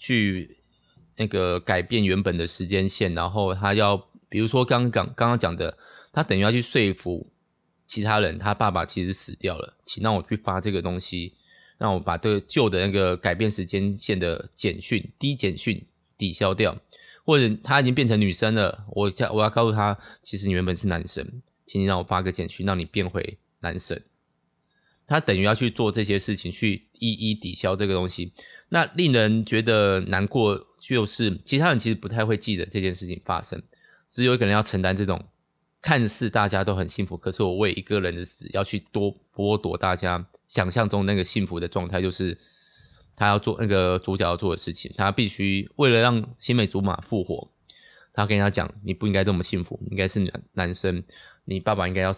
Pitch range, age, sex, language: 95-110 Hz, 20-39, male, Chinese